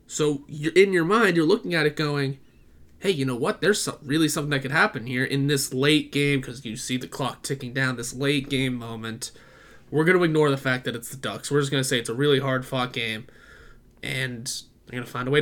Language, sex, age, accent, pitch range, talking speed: English, male, 20-39, American, 125-145 Hz, 245 wpm